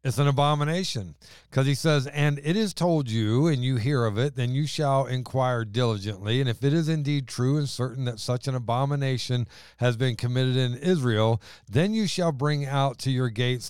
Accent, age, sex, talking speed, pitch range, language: American, 40-59, male, 200 wpm, 115-145 Hz, English